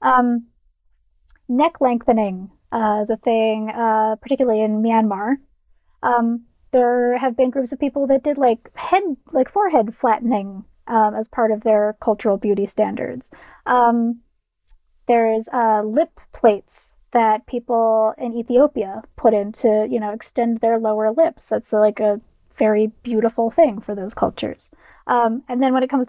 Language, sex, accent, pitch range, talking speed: English, female, American, 220-270 Hz, 155 wpm